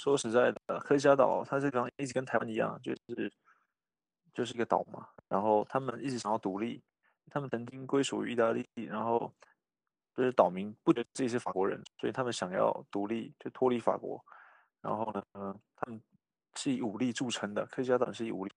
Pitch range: 105-125 Hz